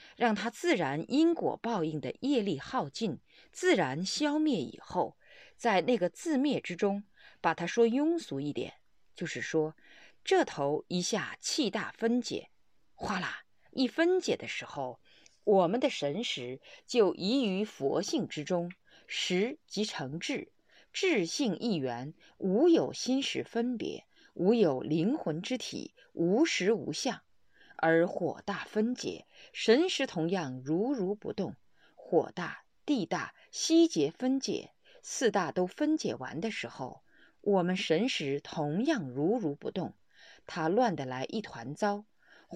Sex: female